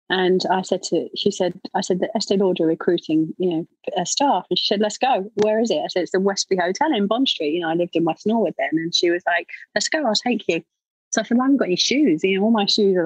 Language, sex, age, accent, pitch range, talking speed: English, female, 30-49, British, 190-250 Hz, 295 wpm